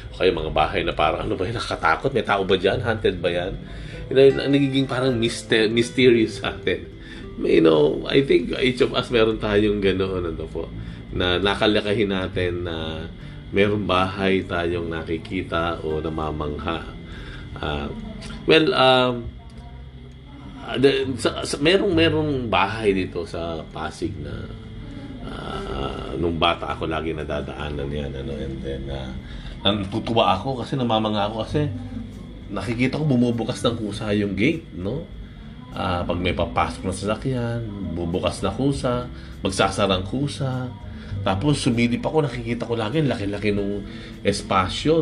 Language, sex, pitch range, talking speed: Filipino, male, 90-125 Hz, 145 wpm